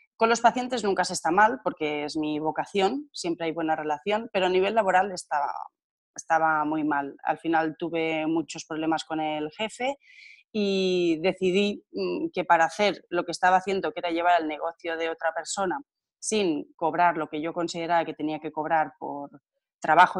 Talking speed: 180 wpm